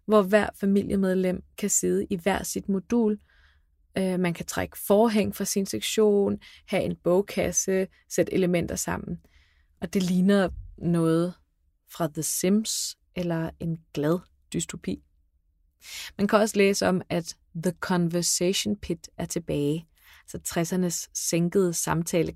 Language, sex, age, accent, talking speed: Danish, female, 20-39, native, 130 wpm